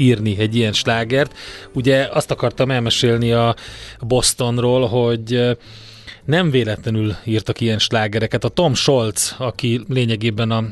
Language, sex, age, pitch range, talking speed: Hungarian, male, 30-49, 110-130 Hz, 125 wpm